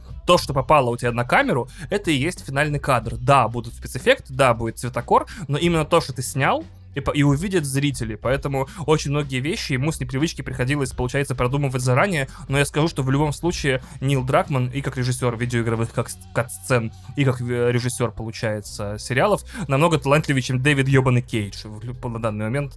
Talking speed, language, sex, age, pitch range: 180 wpm, Russian, male, 20-39, 120-145 Hz